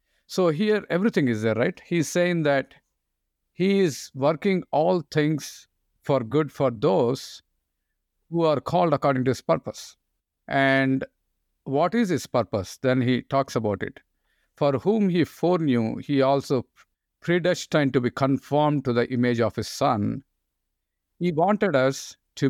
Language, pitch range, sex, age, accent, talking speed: English, 120-155 Hz, male, 50-69, Indian, 145 wpm